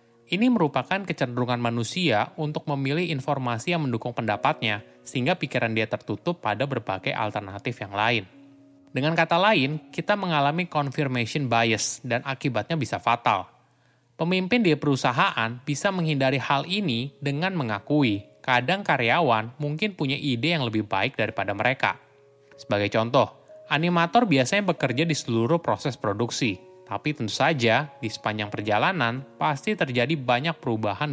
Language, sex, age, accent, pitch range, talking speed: Indonesian, male, 20-39, native, 115-155 Hz, 130 wpm